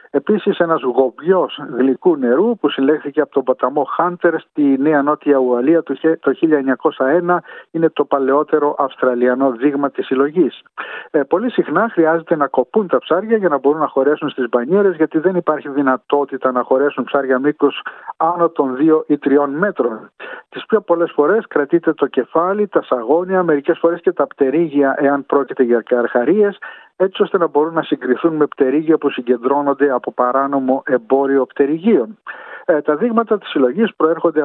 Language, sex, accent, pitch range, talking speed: Greek, male, native, 135-175 Hz, 160 wpm